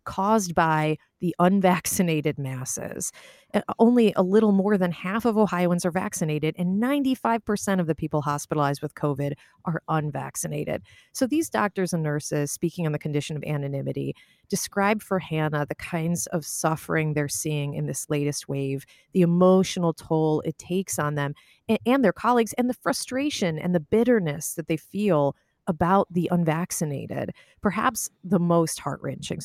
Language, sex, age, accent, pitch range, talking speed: English, female, 30-49, American, 150-180 Hz, 155 wpm